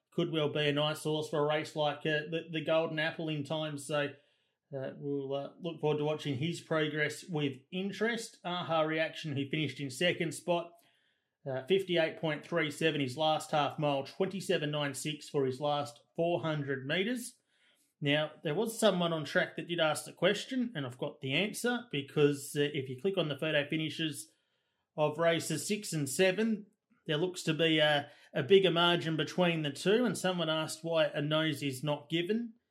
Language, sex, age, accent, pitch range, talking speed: English, male, 30-49, Australian, 145-170 Hz, 180 wpm